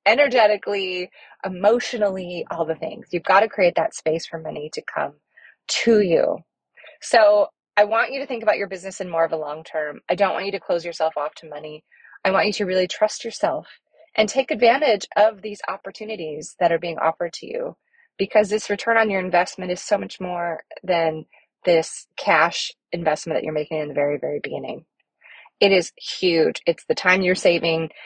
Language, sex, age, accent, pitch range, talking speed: English, female, 20-39, American, 165-215 Hz, 195 wpm